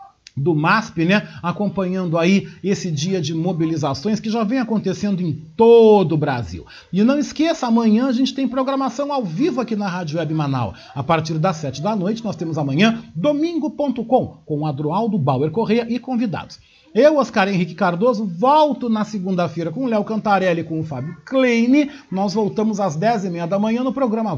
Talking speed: 185 wpm